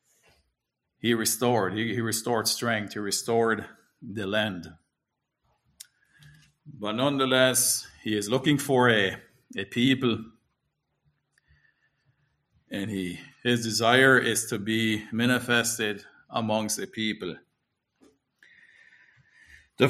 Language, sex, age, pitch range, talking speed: English, male, 50-69, 120-150 Hz, 90 wpm